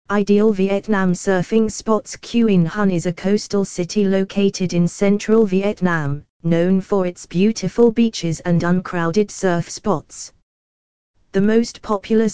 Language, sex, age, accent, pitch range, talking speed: French, female, 20-39, British, 170-210 Hz, 125 wpm